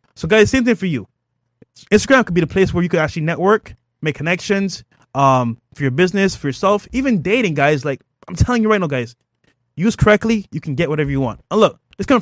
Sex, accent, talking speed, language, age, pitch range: male, American, 225 wpm, English, 20-39, 130-185 Hz